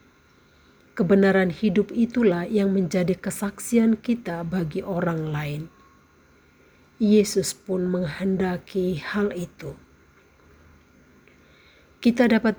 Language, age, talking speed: Indonesian, 40-59, 80 wpm